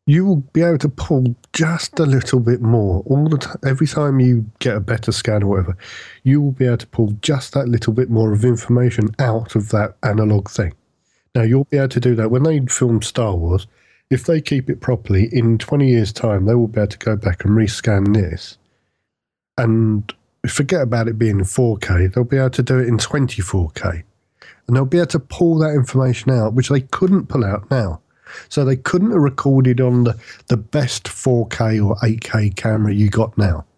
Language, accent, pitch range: English, British, 105-135 Hz